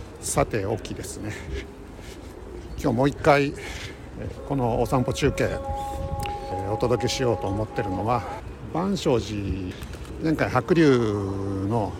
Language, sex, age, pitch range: Japanese, male, 60-79, 95-135 Hz